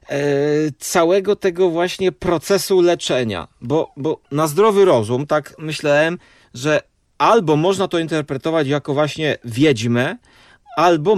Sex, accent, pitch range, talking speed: male, native, 130-175 Hz, 115 wpm